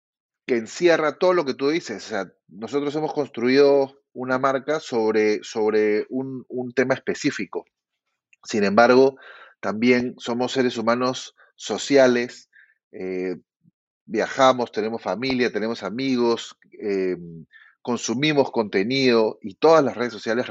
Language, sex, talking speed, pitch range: Spanish, male, 120 wpm, 115-145 Hz